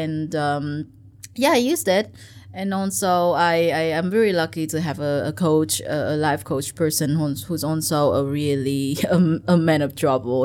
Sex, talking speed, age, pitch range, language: female, 170 wpm, 20-39, 140-170 Hz, English